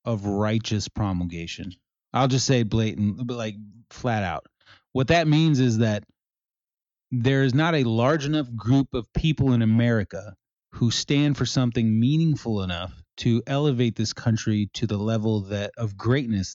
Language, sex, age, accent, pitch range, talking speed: English, male, 30-49, American, 105-135 Hz, 155 wpm